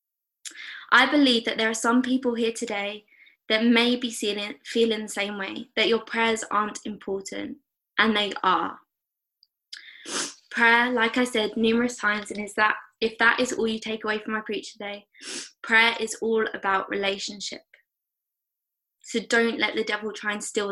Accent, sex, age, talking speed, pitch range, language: British, female, 20-39, 170 wpm, 210-240 Hz, English